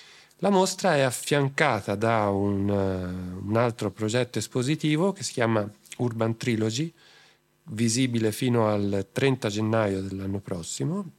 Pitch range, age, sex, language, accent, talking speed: 105-130 Hz, 40-59, male, Italian, native, 120 wpm